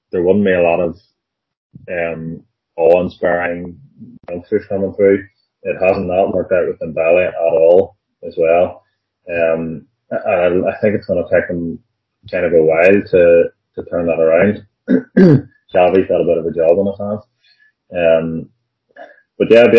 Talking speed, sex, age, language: 165 wpm, male, 30-49, English